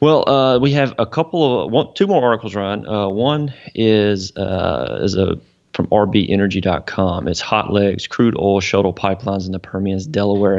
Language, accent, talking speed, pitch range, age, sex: English, American, 175 wpm, 95-105 Hz, 30-49, male